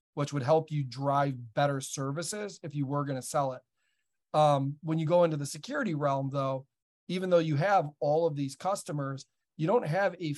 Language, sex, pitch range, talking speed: English, male, 135-155 Hz, 200 wpm